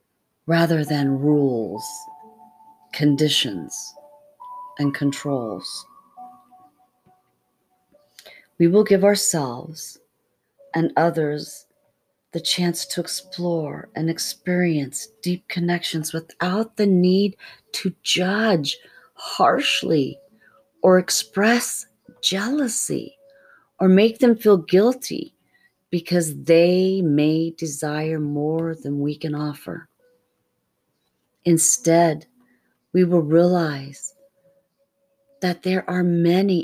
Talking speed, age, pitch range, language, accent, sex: 85 wpm, 40-59, 160-215 Hz, English, American, female